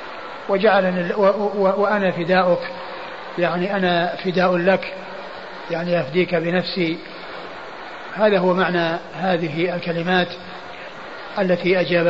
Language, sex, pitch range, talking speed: Arabic, male, 170-190 Hz, 85 wpm